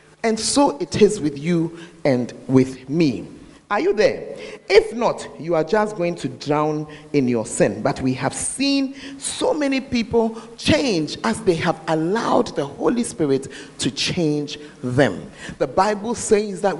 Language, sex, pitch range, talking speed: English, male, 155-230 Hz, 160 wpm